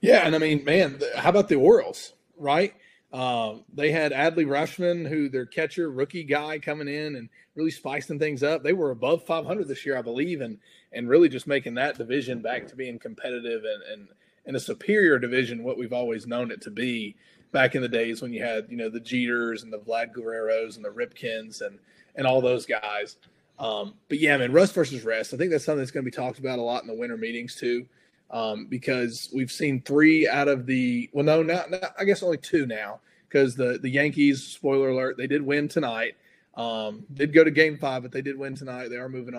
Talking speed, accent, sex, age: 225 wpm, American, male, 30-49